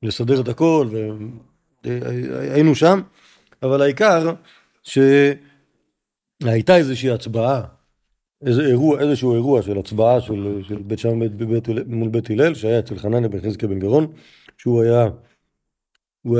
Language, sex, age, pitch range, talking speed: Hebrew, male, 40-59, 105-130 Hz, 135 wpm